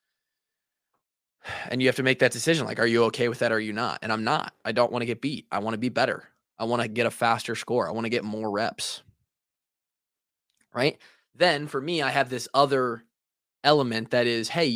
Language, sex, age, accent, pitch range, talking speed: English, male, 20-39, American, 120-150 Hz, 230 wpm